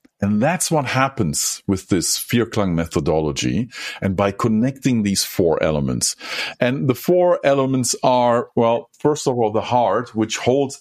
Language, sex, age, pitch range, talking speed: German, male, 50-69, 110-150 Hz, 150 wpm